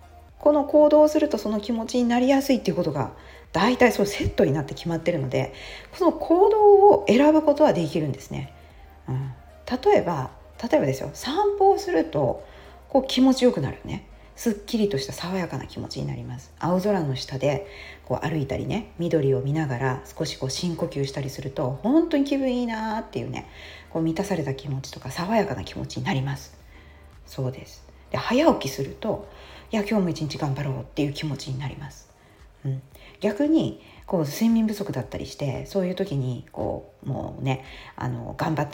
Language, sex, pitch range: Japanese, female, 130-215 Hz